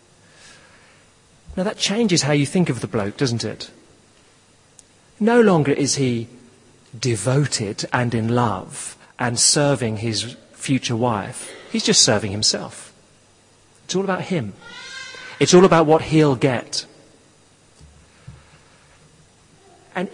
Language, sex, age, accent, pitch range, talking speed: English, male, 40-59, British, 130-190 Hz, 115 wpm